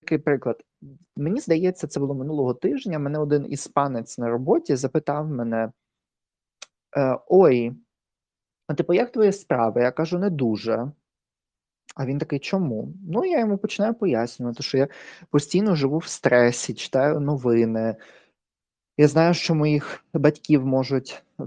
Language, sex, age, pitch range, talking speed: Ukrainian, male, 20-39, 120-150 Hz, 135 wpm